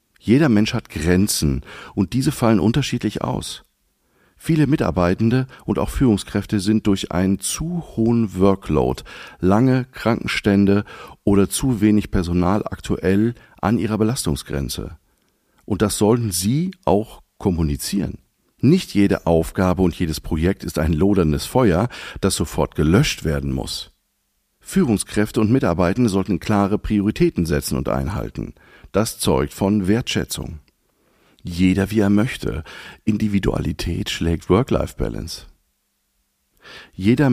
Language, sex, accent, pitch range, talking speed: German, male, German, 85-110 Hz, 115 wpm